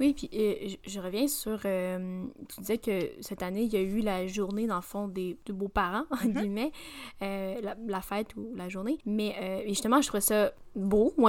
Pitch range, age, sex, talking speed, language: 195-245 Hz, 10-29, female, 215 wpm, French